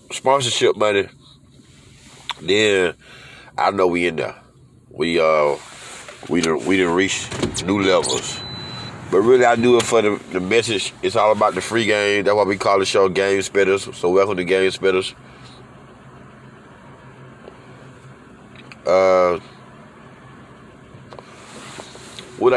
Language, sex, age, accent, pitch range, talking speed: English, male, 30-49, American, 105-120 Hz, 125 wpm